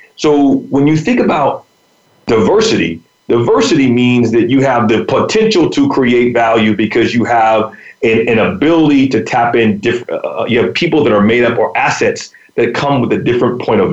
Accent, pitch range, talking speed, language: American, 120-155 Hz, 175 wpm, English